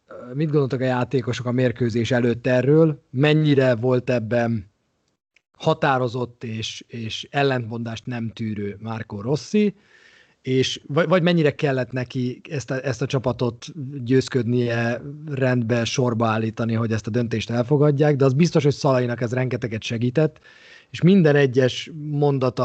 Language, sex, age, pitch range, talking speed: Hungarian, male, 30-49, 115-140 Hz, 135 wpm